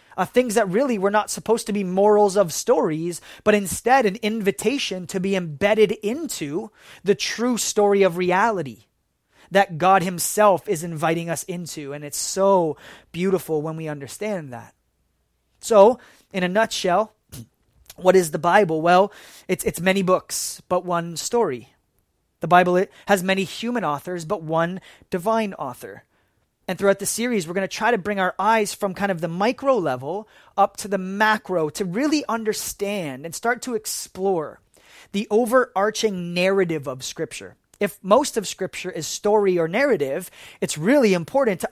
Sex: male